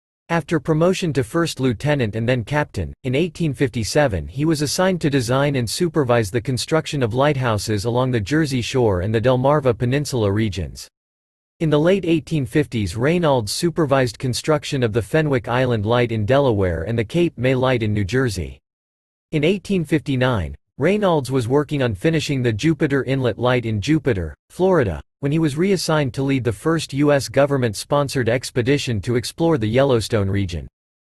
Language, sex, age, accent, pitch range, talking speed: English, male, 40-59, American, 115-150 Hz, 160 wpm